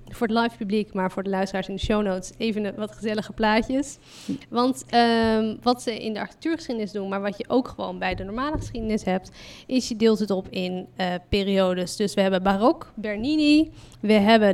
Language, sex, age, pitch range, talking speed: Dutch, female, 20-39, 200-245 Hz, 200 wpm